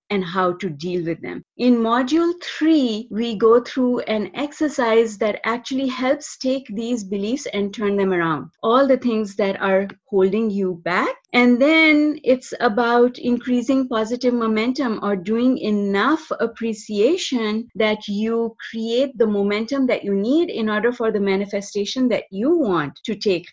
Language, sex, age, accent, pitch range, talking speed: English, female, 30-49, Indian, 205-260 Hz, 155 wpm